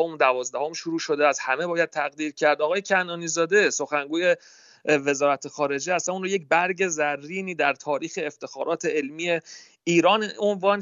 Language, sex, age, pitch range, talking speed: Persian, male, 40-59, 145-190 Hz, 145 wpm